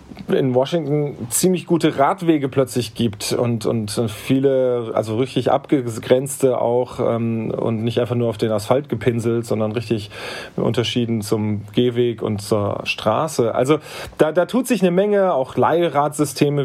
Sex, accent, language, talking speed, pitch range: male, German, German, 145 wpm, 120-150 Hz